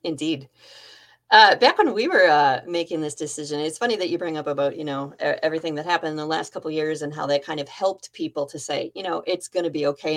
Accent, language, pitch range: American, English, 150-180 Hz